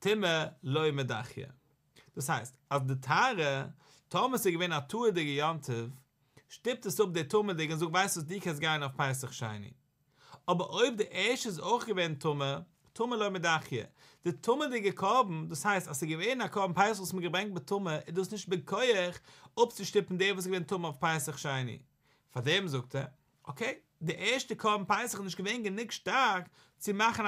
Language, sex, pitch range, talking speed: English, male, 140-195 Hz, 185 wpm